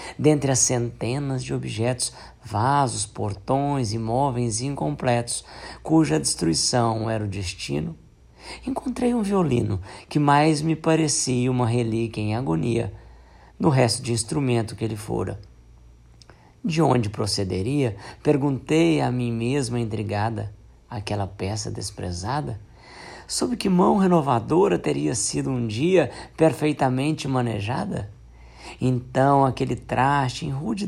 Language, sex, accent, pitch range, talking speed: Portuguese, male, Brazilian, 105-140 Hz, 115 wpm